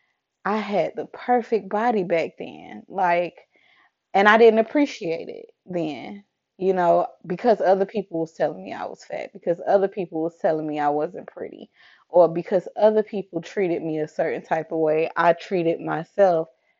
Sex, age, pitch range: female, 20-39, 170-205 Hz